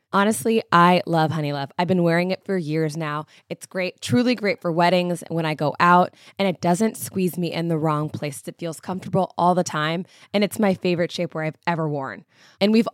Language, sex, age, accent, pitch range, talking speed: English, female, 20-39, American, 160-200 Hz, 225 wpm